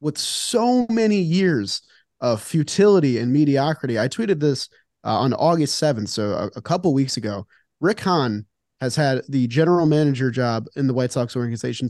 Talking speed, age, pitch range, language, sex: 170 wpm, 30-49, 125-170 Hz, English, male